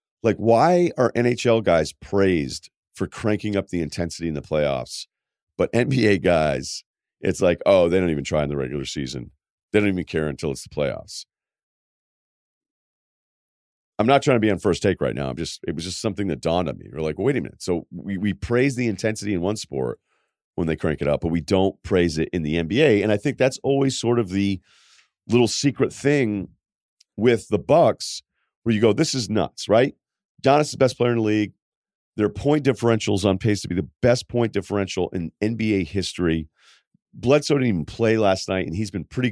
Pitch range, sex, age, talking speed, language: 85-120 Hz, male, 40-59, 210 wpm, English